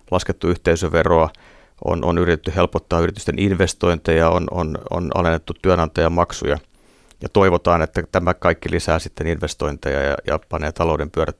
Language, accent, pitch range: Finnish, native, 80-95 Hz